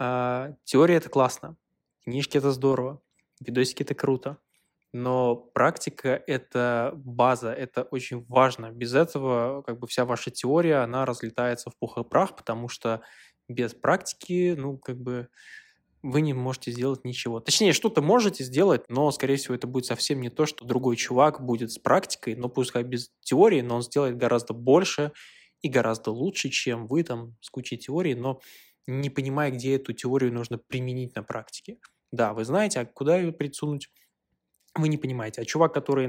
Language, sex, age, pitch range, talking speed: Russian, male, 20-39, 125-145 Hz, 165 wpm